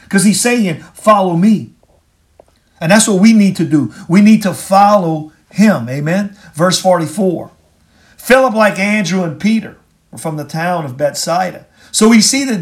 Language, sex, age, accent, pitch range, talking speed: English, male, 50-69, American, 145-205 Hz, 165 wpm